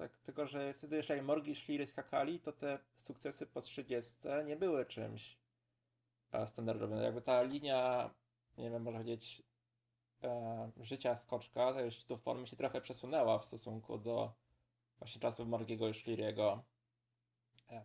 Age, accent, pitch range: 20-39, native, 115-130 Hz